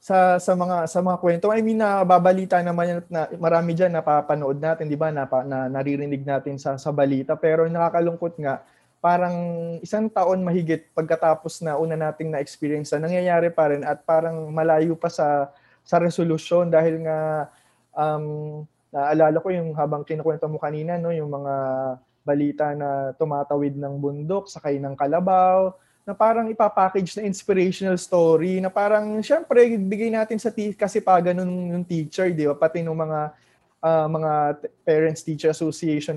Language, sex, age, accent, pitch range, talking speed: Filipino, male, 20-39, native, 150-180 Hz, 160 wpm